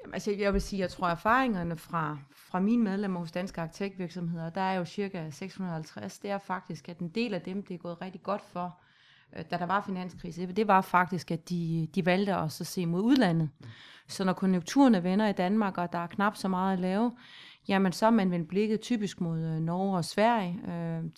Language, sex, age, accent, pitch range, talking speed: Danish, female, 30-49, native, 175-205 Hz, 210 wpm